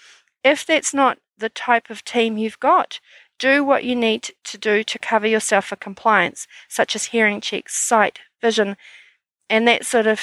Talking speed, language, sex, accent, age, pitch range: 175 wpm, English, female, Australian, 40-59, 205-245 Hz